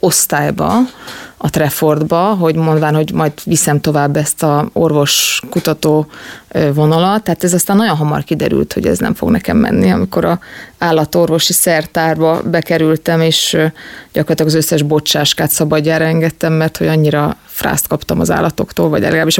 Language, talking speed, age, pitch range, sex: Hungarian, 140 wpm, 20-39, 155-180 Hz, female